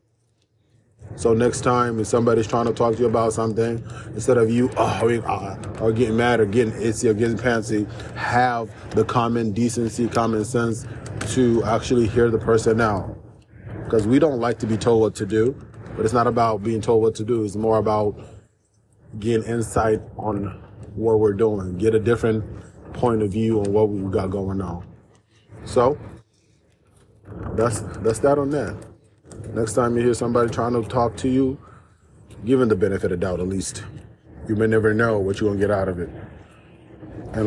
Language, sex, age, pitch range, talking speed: English, male, 20-39, 105-120 Hz, 185 wpm